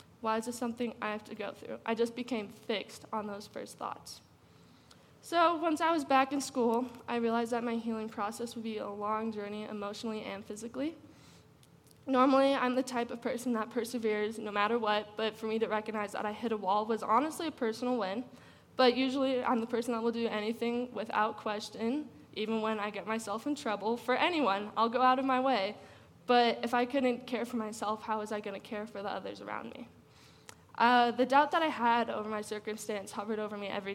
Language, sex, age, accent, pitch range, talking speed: English, female, 10-29, American, 210-245 Hz, 215 wpm